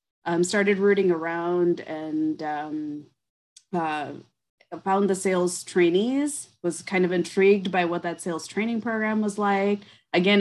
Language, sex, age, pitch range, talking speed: English, female, 20-39, 165-190 Hz, 140 wpm